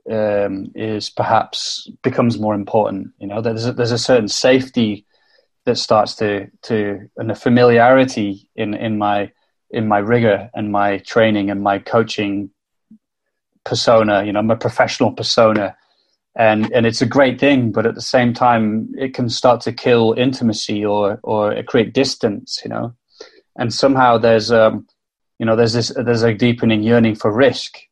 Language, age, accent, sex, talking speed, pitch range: English, 20-39, British, male, 165 wpm, 110-125 Hz